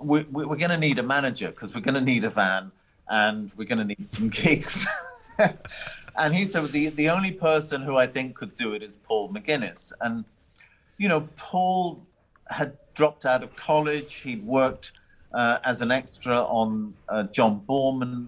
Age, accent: 50-69, British